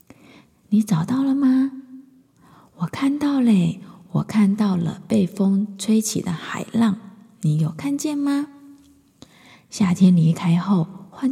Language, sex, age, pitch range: Chinese, female, 20-39, 175-225 Hz